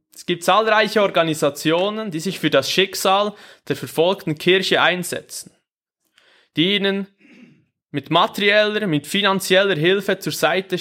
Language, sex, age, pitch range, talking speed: German, male, 20-39, 160-215 Hz, 120 wpm